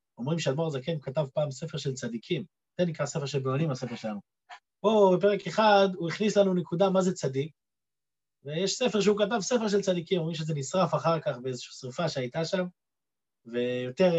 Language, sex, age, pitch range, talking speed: Hebrew, male, 30-49, 135-200 Hz, 180 wpm